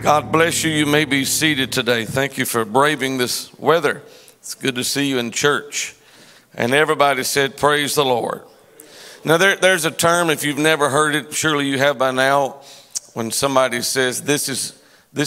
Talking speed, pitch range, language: 180 wpm, 130-160 Hz, English